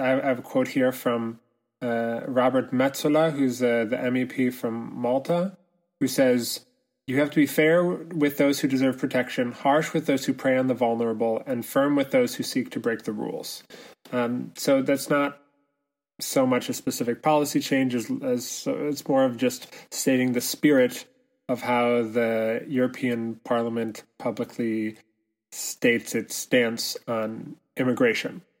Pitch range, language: 120-150 Hz, Dutch